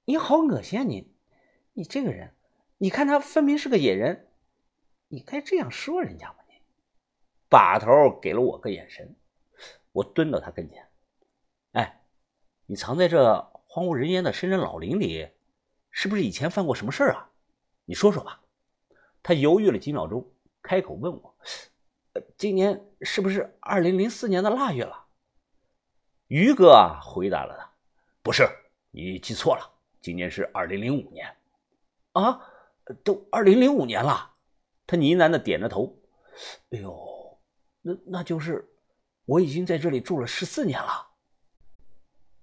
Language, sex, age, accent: Chinese, male, 50-69, native